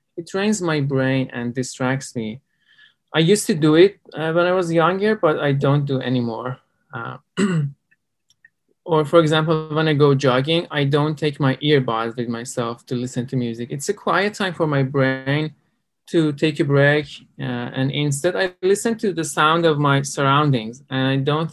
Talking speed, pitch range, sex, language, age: 185 wpm, 130-160 Hz, male, English, 20-39